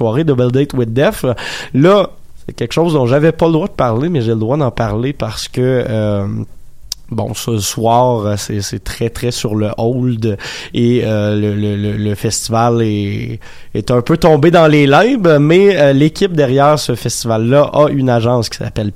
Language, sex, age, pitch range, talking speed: French, male, 20-39, 115-145 Hz, 185 wpm